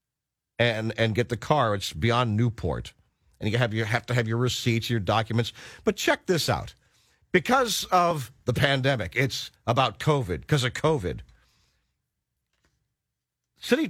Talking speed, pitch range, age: 145 wpm, 110-150 Hz, 50-69